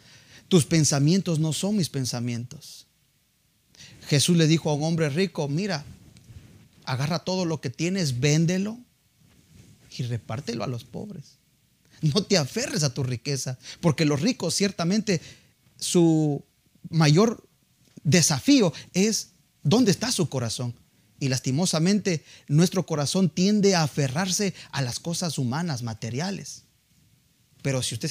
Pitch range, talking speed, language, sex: 135-180 Hz, 125 wpm, Spanish, male